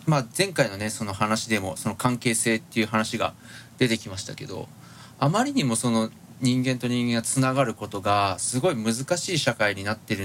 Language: Japanese